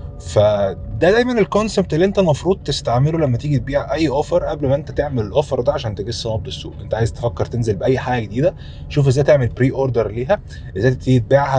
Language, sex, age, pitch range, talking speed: Arabic, male, 20-39, 110-140 Hz, 190 wpm